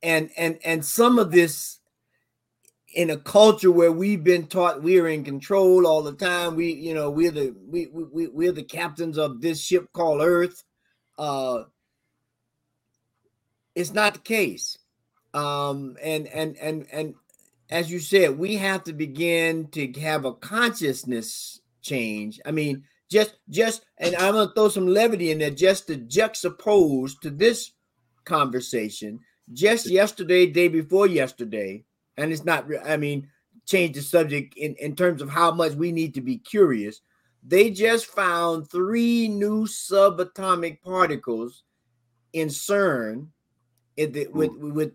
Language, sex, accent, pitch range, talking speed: English, male, American, 145-195 Hz, 150 wpm